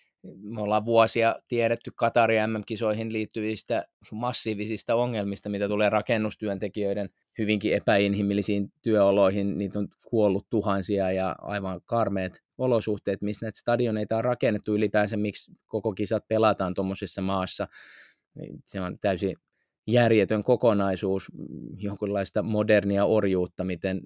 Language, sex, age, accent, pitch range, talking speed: Finnish, male, 20-39, native, 100-115 Hz, 105 wpm